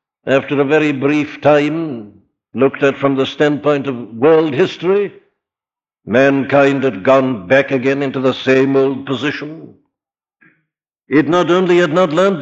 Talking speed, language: 140 wpm, English